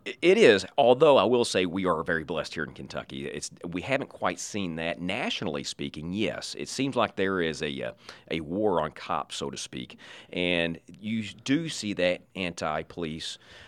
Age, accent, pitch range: 40-59, American, 75-95 Hz